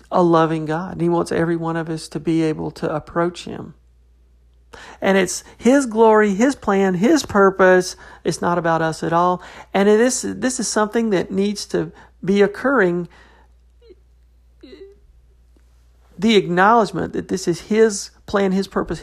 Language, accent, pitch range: English, American, 165-210 Hz